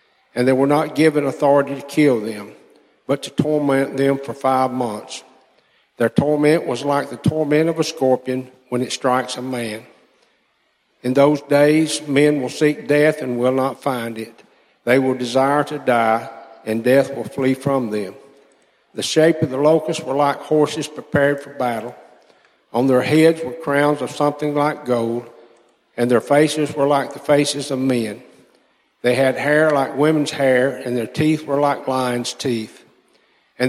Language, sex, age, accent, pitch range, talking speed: English, male, 60-79, American, 125-150 Hz, 170 wpm